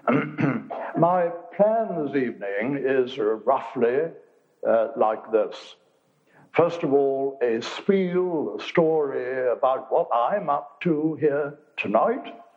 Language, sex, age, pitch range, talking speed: English, male, 60-79, 130-180 Hz, 110 wpm